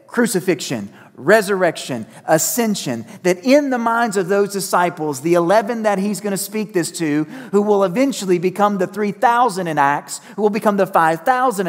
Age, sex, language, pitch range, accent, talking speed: 40-59, male, English, 150-225 Hz, American, 160 wpm